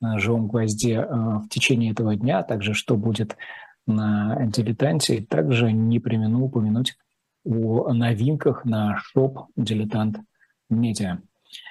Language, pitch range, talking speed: Russian, 115-145 Hz, 95 wpm